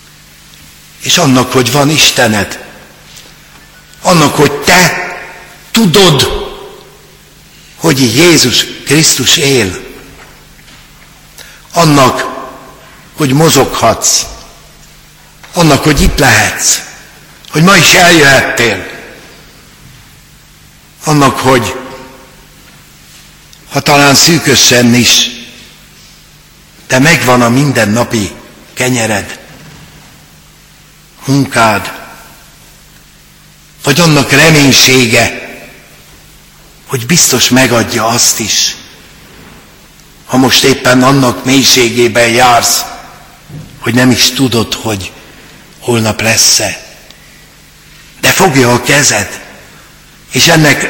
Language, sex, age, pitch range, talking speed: Hungarian, male, 60-79, 120-150 Hz, 75 wpm